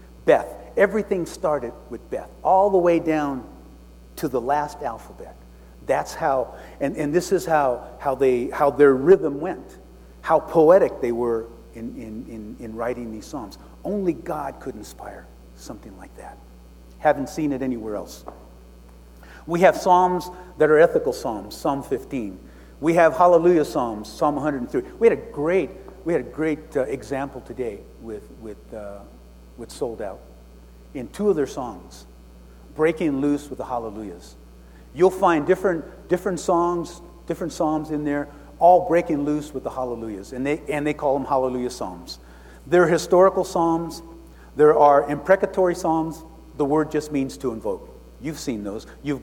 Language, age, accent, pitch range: English, 50-69, American, 110-170 Hz